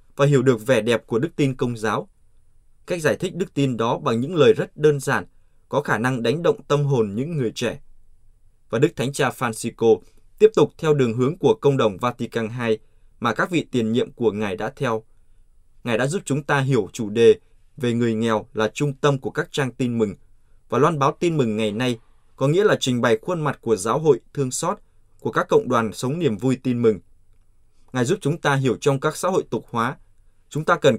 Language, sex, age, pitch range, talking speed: Vietnamese, male, 20-39, 110-145 Hz, 225 wpm